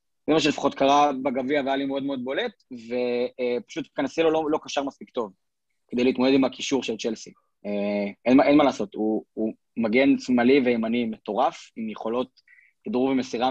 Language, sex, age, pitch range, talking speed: Hebrew, male, 20-39, 120-150 Hz, 175 wpm